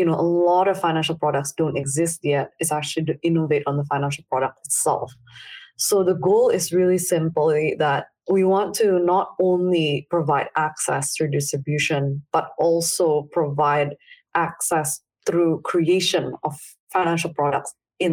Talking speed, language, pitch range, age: 150 wpm, English, 150-175 Hz, 20-39